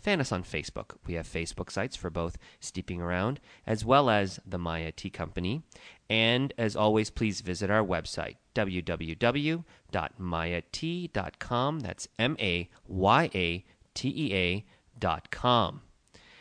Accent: American